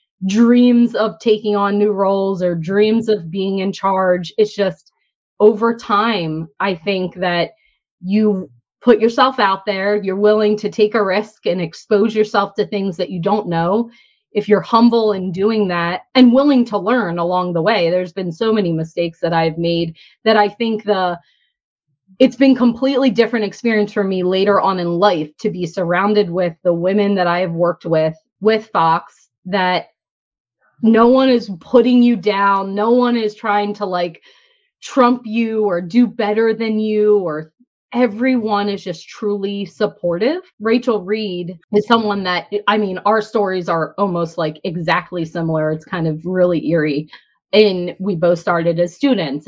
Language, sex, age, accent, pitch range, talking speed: English, female, 20-39, American, 175-220 Hz, 165 wpm